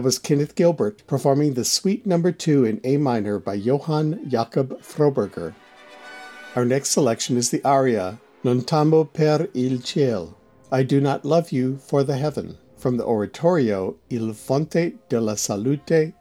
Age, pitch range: 60-79, 120-155 Hz